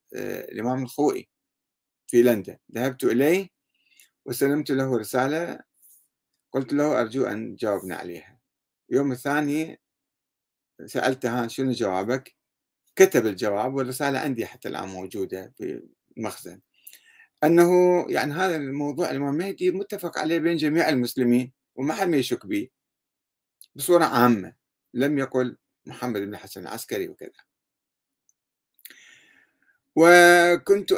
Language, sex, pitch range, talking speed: Arabic, male, 125-170 Hz, 105 wpm